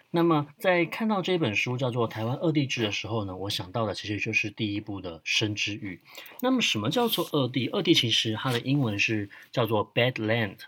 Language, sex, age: Chinese, male, 30-49